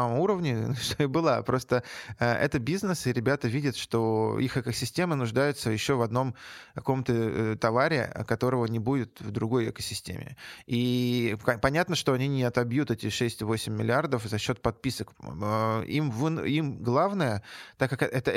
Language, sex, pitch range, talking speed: Russian, male, 115-140 Hz, 155 wpm